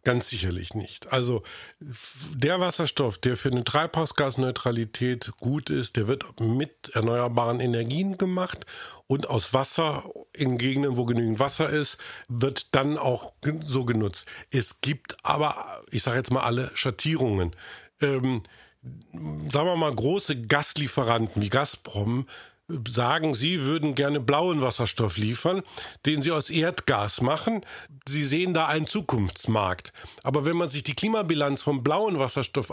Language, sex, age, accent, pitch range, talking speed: German, male, 50-69, German, 125-155 Hz, 140 wpm